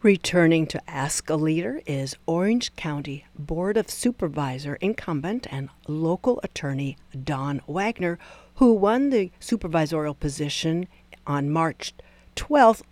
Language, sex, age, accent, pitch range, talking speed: English, female, 60-79, American, 150-195 Hz, 115 wpm